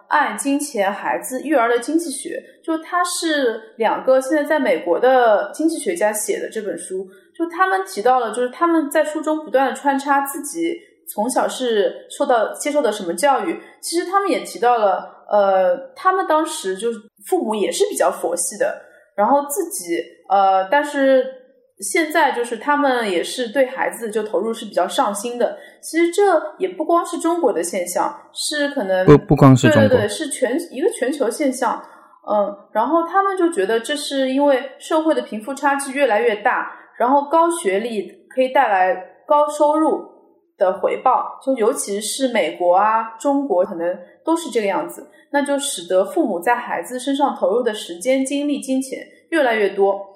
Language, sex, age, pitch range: English, female, 20-39, 230-325 Hz